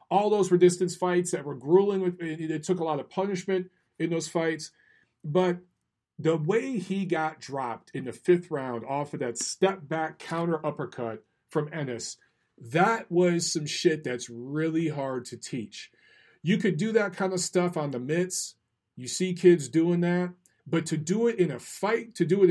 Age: 40-59